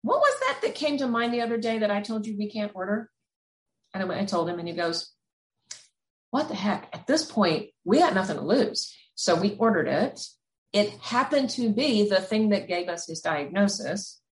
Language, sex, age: English, female, 40-59